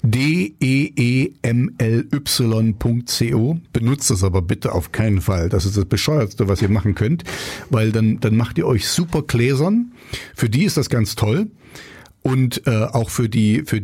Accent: German